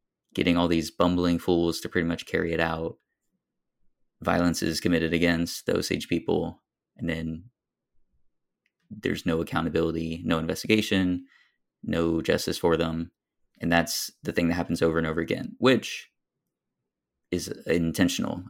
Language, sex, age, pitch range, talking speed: English, male, 20-39, 85-90 Hz, 135 wpm